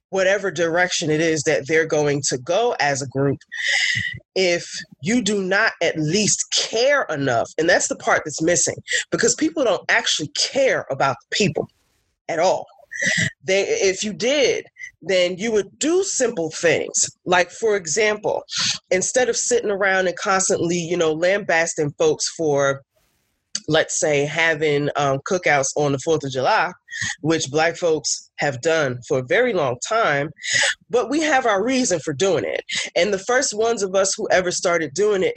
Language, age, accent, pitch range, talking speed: English, 20-39, American, 150-215 Hz, 165 wpm